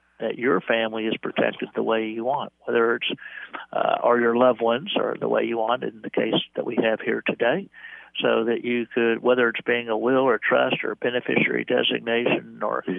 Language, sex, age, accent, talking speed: English, male, 60-79, American, 205 wpm